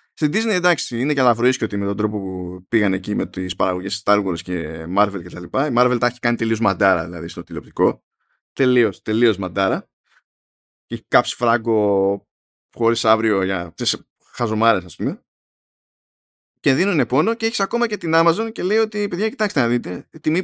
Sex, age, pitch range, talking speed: male, 20-39, 105-165 Hz, 185 wpm